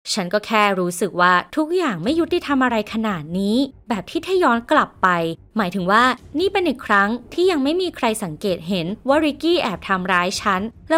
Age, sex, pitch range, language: 20-39, female, 175-230 Hz, Thai